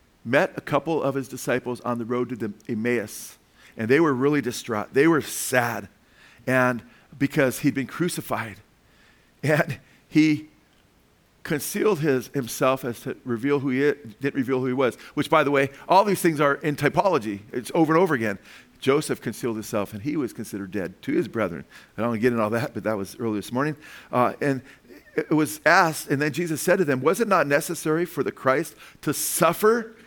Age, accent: 50-69, American